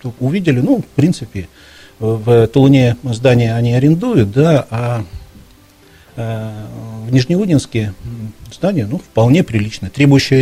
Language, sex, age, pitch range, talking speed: Russian, male, 40-59, 110-150 Hz, 105 wpm